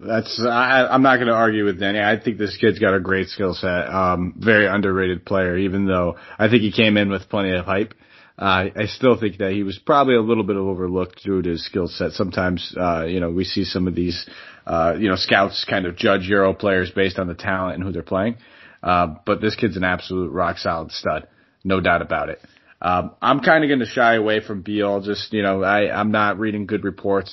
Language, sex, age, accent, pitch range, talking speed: English, male, 30-49, American, 95-110 Hz, 235 wpm